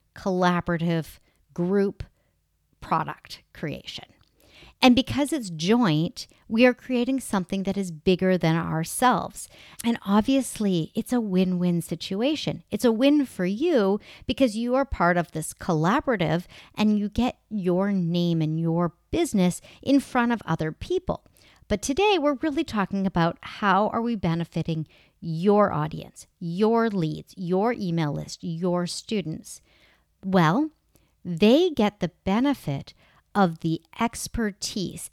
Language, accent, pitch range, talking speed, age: English, American, 175-235 Hz, 130 wpm, 50-69